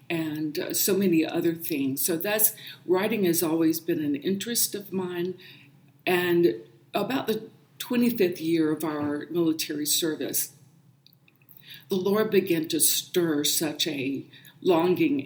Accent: American